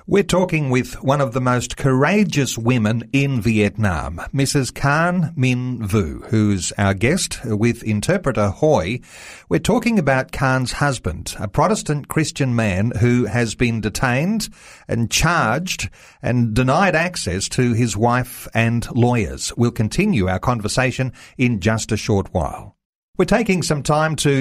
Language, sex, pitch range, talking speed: English, male, 110-145 Hz, 145 wpm